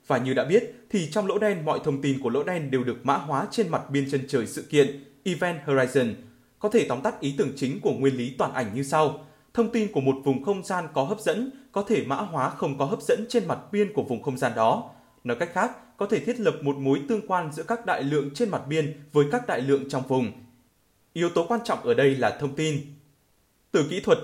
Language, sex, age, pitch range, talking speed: Vietnamese, male, 20-39, 135-185 Hz, 255 wpm